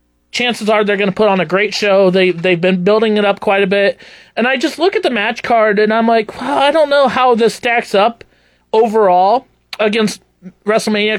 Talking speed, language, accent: 225 wpm, English, American